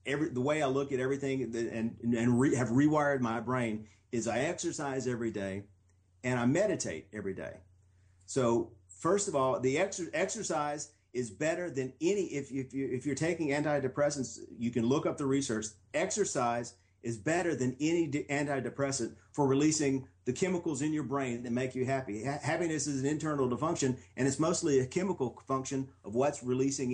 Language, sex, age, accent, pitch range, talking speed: English, male, 40-59, American, 115-150 Hz, 185 wpm